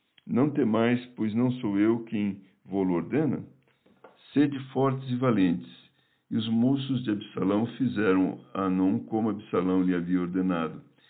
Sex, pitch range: male, 95-125 Hz